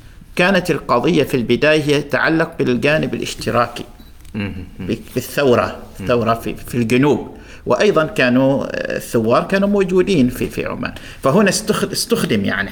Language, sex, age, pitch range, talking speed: Arabic, male, 50-69, 125-160 Hz, 100 wpm